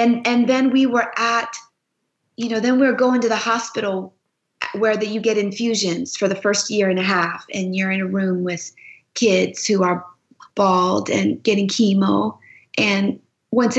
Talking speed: 185 wpm